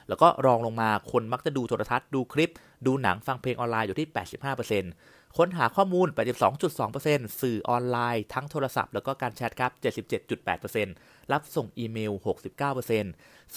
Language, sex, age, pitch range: Thai, male, 30-49, 110-140 Hz